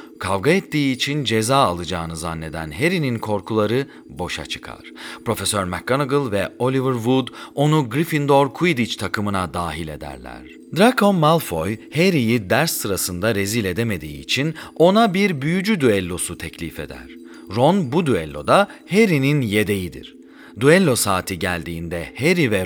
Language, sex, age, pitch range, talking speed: Turkish, male, 40-59, 95-155 Hz, 120 wpm